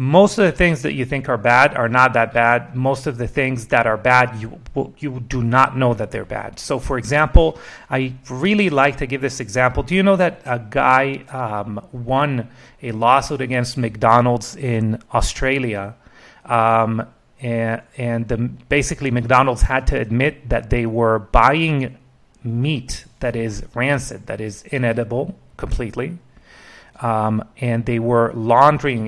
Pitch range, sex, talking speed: 115-135 Hz, male, 165 wpm